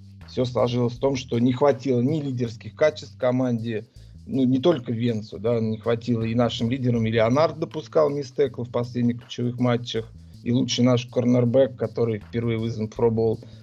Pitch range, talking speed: 115-130 Hz, 165 wpm